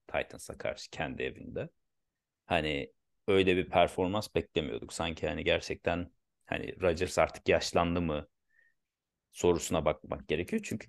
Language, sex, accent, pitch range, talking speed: Turkish, male, native, 85-115 Hz, 115 wpm